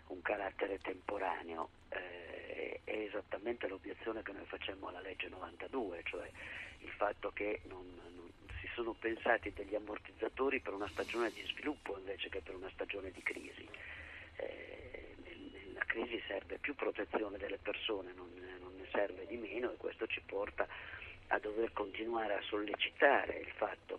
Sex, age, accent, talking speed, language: male, 50-69, native, 155 wpm, Italian